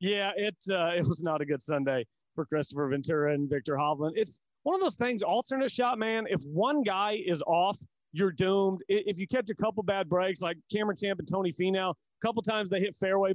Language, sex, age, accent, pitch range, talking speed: English, male, 30-49, American, 165-210 Hz, 220 wpm